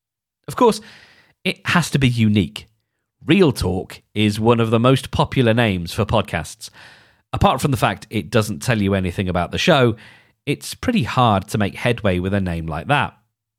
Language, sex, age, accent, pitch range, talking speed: English, male, 40-59, British, 100-145 Hz, 180 wpm